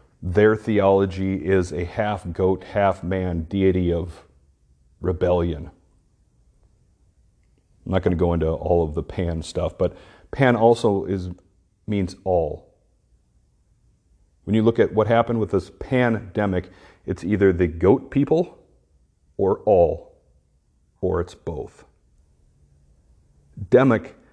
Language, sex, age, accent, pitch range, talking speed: English, male, 40-59, American, 80-105 Hz, 115 wpm